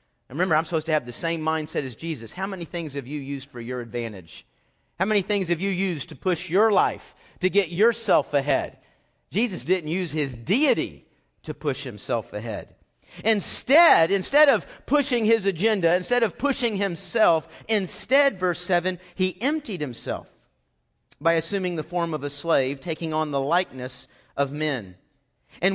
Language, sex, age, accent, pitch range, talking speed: English, male, 50-69, American, 150-200 Hz, 170 wpm